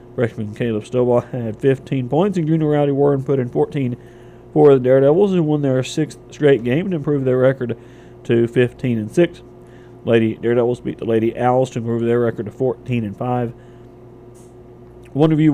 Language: English